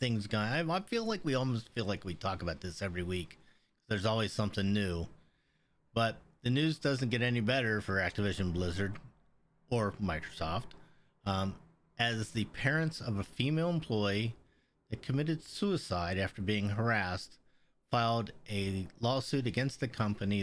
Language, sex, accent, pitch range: English, male, American, 95-120 Hz